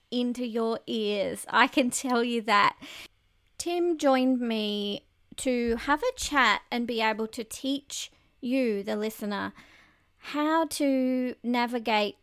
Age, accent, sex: 30-49, Australian, female